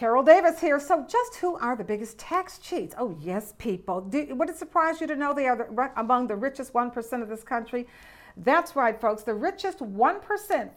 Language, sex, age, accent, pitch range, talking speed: English, female, 50-69, American, 225-285 Hz, 205 wpm